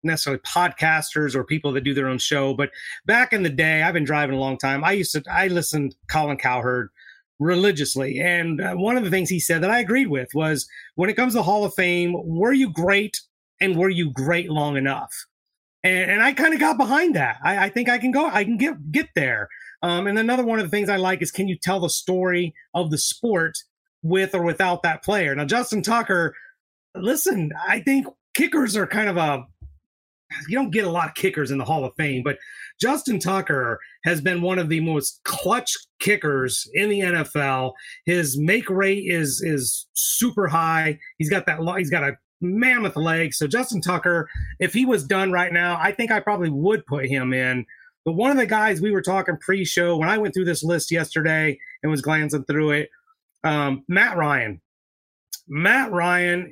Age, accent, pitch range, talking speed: 30-49, American, 150-200 Hz, 205 wpm